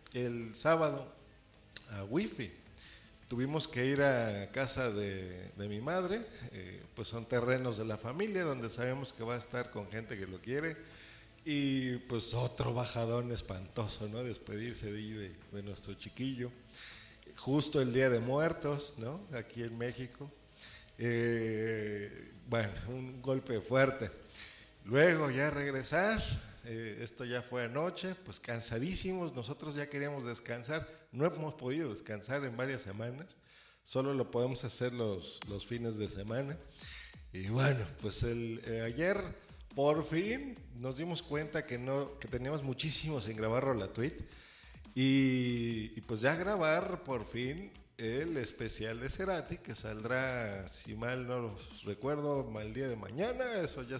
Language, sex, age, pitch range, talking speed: Spanish, male, 50-69, 110-140 Hz, 145 wpm